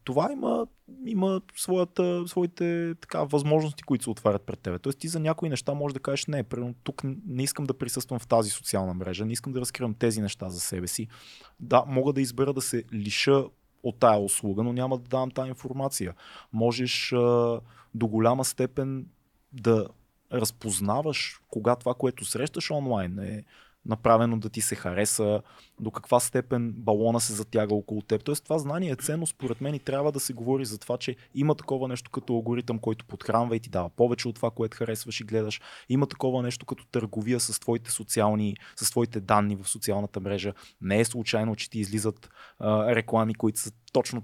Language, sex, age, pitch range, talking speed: Bulgarian, male, 20-39, 110-135 Hz, 185 wpm